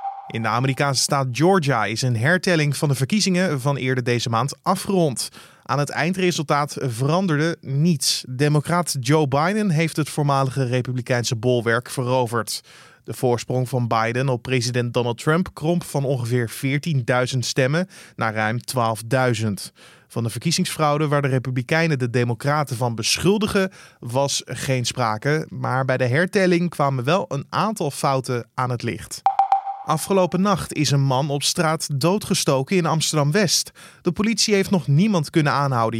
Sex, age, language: male, 20-39, Dutch